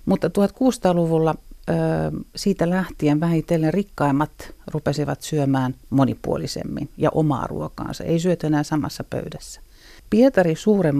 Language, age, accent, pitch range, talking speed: Finnish, 50-69, native, 135-165 Hz, 105 wpm